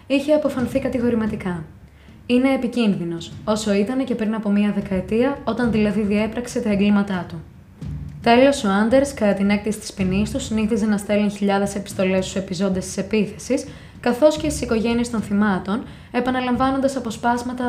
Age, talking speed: 20-39, 150 wpm